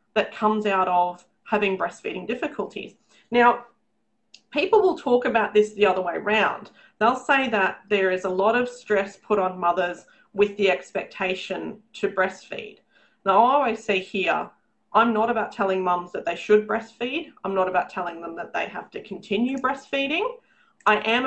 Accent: Australian